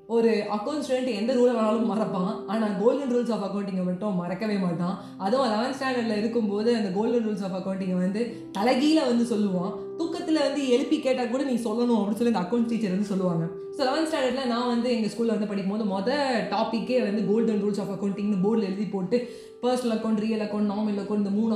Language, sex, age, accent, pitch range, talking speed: Tamil, female, 20-39, native, 200-245 Hz, 190 wpm